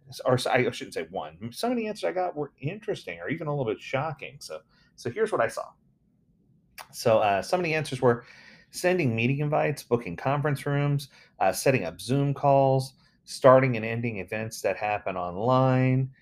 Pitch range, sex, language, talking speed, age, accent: 120-155 Hz, male, English, 185 wpm, 30-49, American